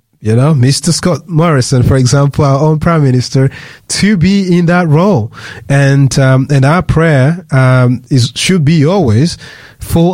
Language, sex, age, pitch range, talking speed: English, male, 30-49, 125-160 Hz, 160 wpm